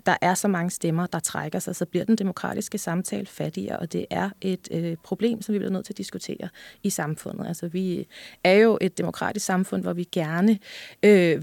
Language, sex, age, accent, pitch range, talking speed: Danish, female, 30-49, native, 160-195 Hz, 210 wpm